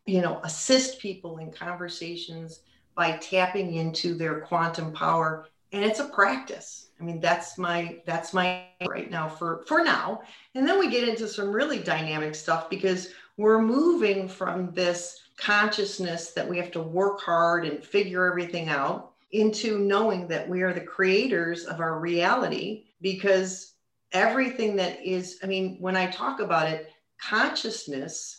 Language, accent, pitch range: English, American, 175-205 Hz